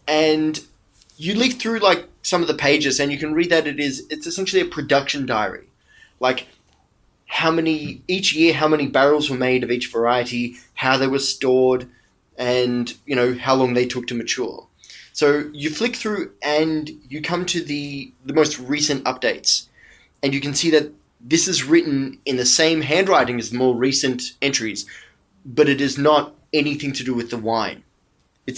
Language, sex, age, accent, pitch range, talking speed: English, male, 20-39, Australian, 115-145 Hz, 185 wpm